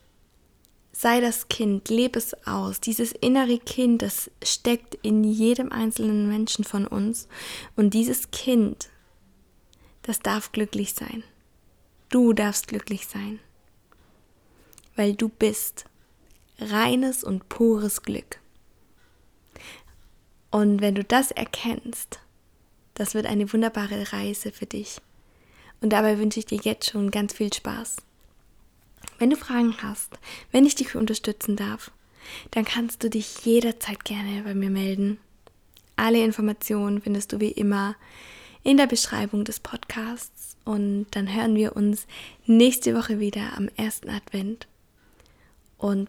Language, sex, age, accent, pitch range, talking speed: German, female, 20-39, German, 205-230 Hz, 130 wpm